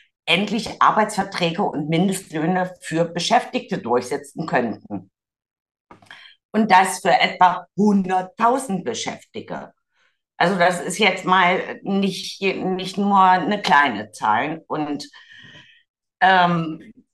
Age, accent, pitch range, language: 50-69, German, 170-225 Hz, German